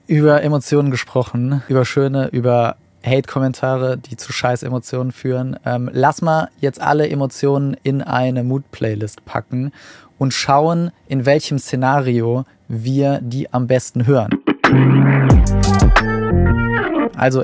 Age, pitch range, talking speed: 20-39, 125-140 Hz, 110 wpm